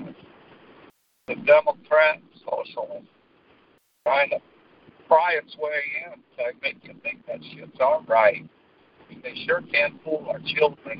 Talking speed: 120 wpm